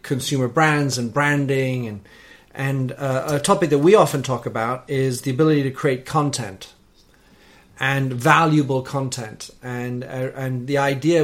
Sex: male